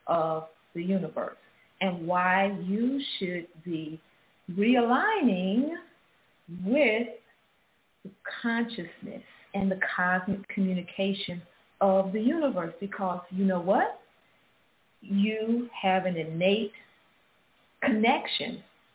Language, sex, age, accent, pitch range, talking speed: English, female, 40-59, American, 180-220 Hz, 90 wpm